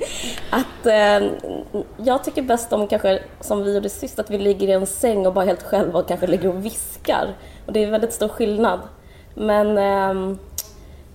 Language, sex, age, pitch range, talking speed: Swedish, female, 20-39, 175-215 Hz, 185 wpm